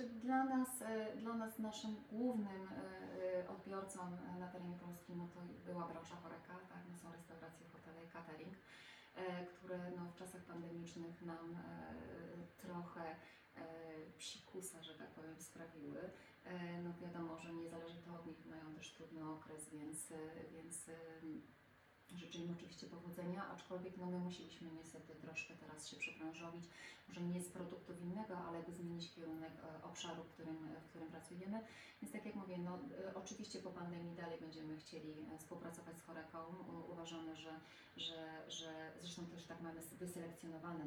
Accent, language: native, Polish